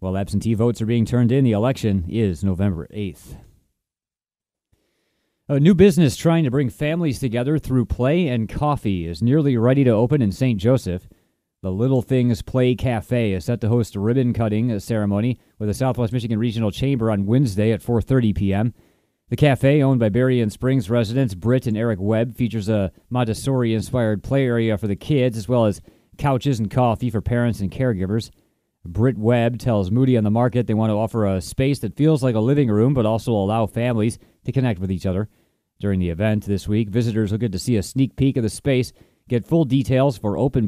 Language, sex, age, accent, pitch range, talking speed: English, male, 30-49, American, 105-130 Hz, 200 wpm